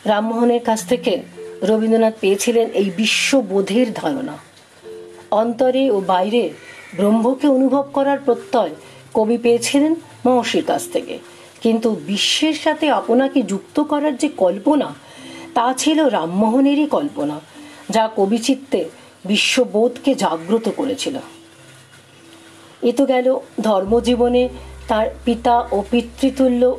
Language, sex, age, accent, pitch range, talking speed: Bengali, female, 50-69, native, 195-270 Hz, 100 wpm